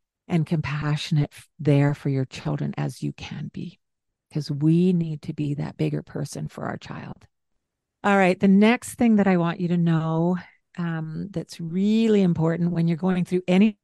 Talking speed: 180 wpm